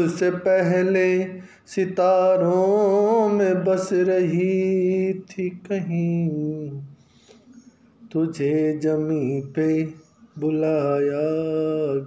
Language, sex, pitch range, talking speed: English, male, 140-185 Hz, 60 wpm